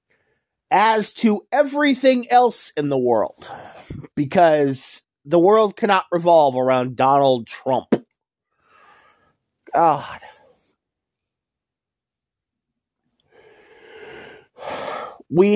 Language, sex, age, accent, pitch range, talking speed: English, male, 30-49, American, 155-250 Hz, 65 wpm